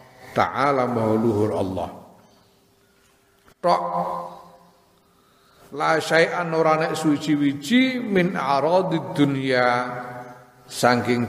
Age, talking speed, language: 50-69, 65 wpm, Indonesian